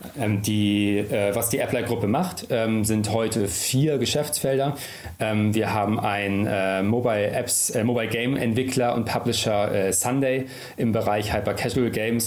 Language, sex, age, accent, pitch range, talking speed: German, male, 40-59, German, 100-120 Hz, 135 wpm